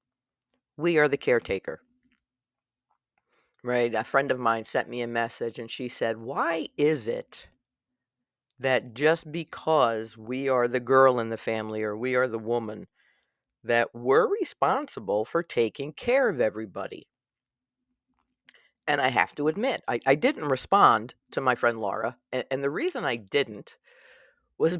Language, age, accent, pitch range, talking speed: English, 50-69, American, 120-145 Hz, 150 wpm